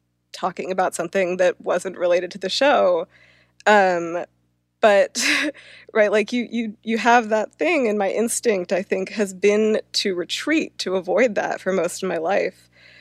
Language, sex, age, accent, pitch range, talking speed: English, female, 20-39, American, 170-215 Hz, 165 wpm